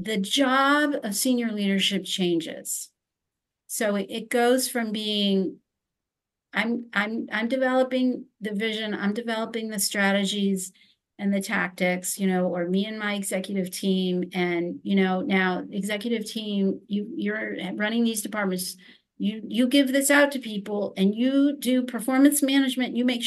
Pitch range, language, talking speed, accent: 200-245 Hz, English, 145 wpm, American